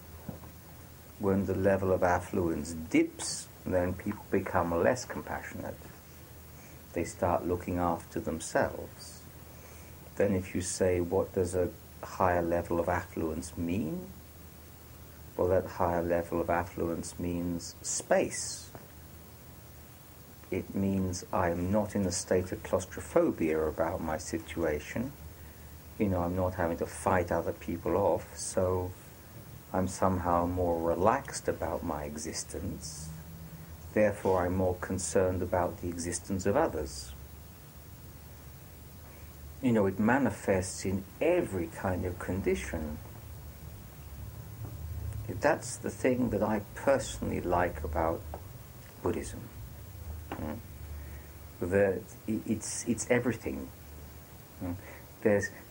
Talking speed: 110 wpm